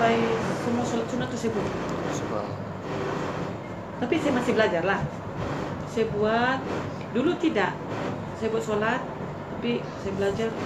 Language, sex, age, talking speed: Malay, female, 30-49, 130 wpm